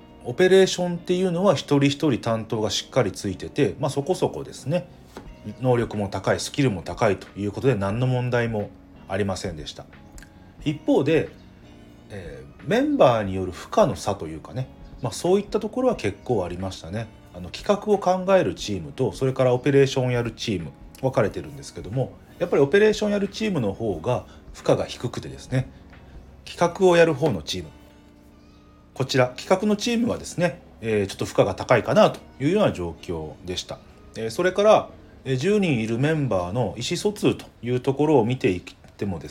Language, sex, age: Japanese, male, 40-59